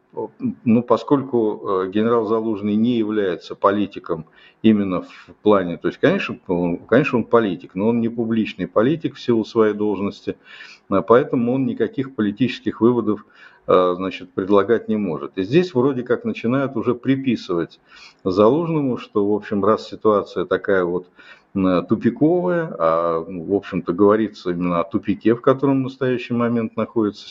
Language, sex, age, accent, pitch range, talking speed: Russian, male, 50-69, native, 100-130 Hz, 135 wpm